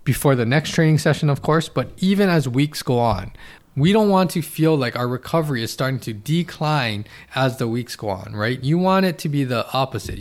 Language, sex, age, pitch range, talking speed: English, male, 20-39, 115-155 Hz, 225 wpm